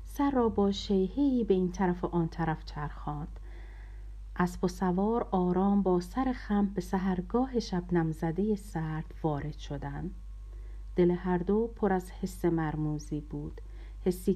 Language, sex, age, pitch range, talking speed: Persian, female, 50-69, 155-210 Hz, 140 wpm